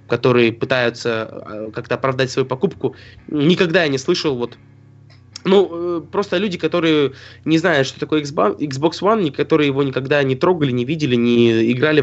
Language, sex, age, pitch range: Russian, male, 20-39, 120-155 Hz